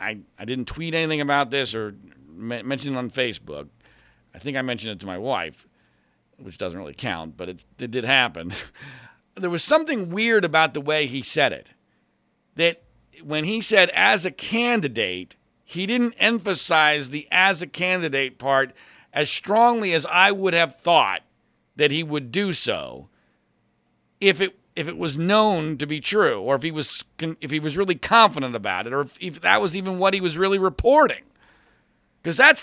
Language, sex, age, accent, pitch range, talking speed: English, male, 50-69, American, 130-195 Hz, 185 wpm